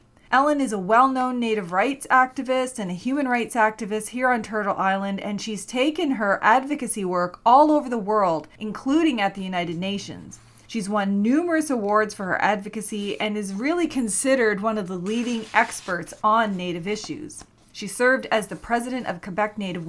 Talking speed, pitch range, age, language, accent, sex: 175 wpm, 190-250 Hz, 30-49, English, American, female